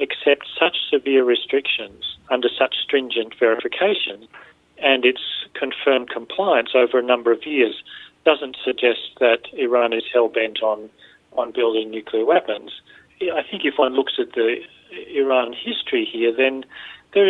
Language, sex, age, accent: Korean, male, 40-59, Australian